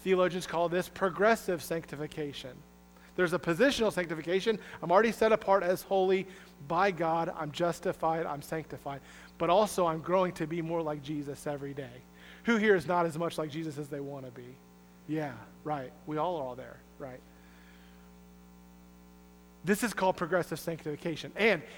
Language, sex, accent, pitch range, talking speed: English, male, American, 125-195 Hz, 160 wpm